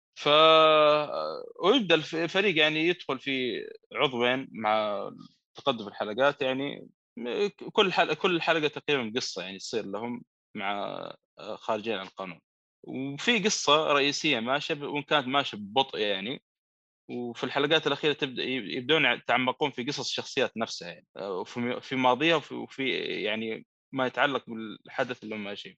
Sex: male